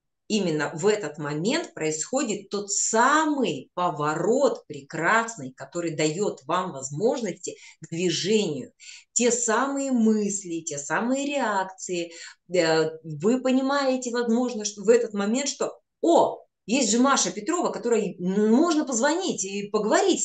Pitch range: 160-240 Hz